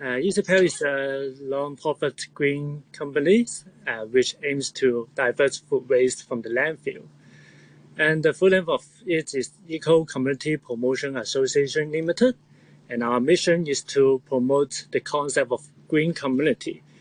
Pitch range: 125-170 Hz